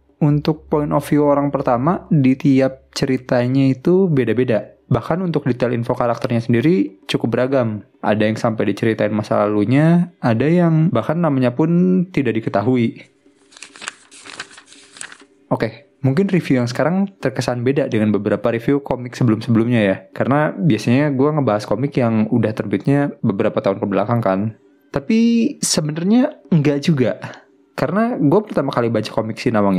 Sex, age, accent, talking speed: male, 20-39, native, 140 wpm